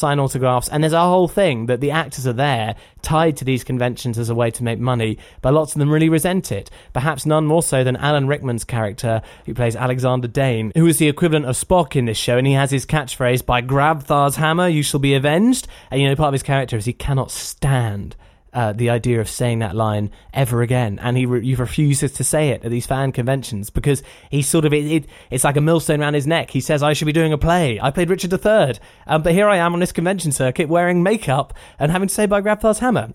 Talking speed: 250 wpm